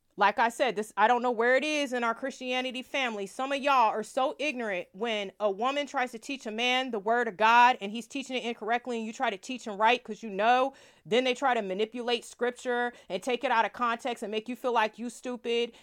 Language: English